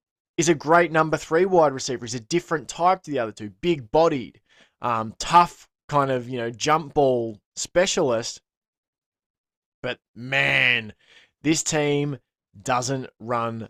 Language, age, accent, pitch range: English, 20-39, Australian, 115-150 Hz